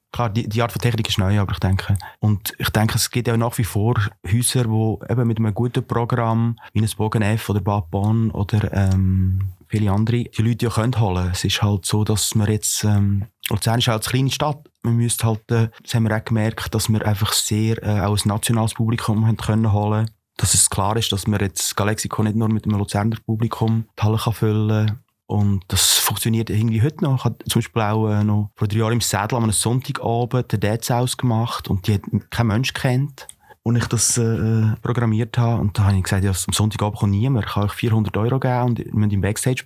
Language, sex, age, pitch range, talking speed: German, male, 30-49, 105-115 Hz, 235 wpm